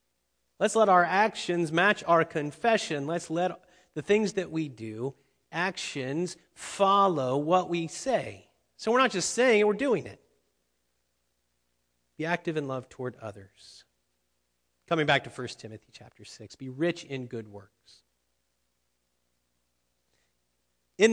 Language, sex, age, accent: English, male, 40-59, American